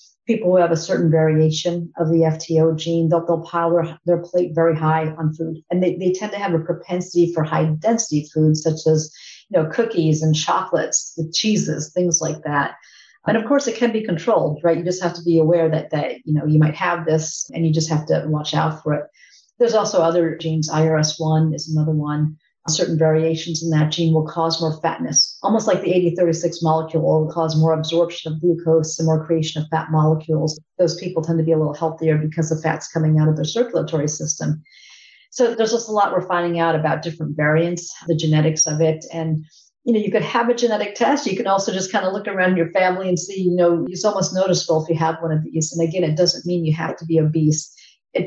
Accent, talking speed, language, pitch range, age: American, 225 wpm, English, 155-175 Hz, 40-59